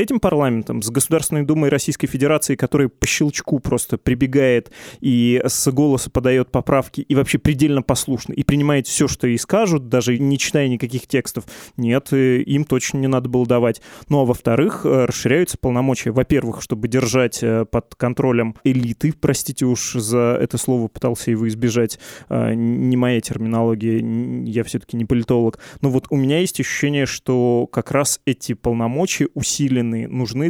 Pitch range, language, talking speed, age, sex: 120-145 Hz, Russian, 155 wpm, 20-39, male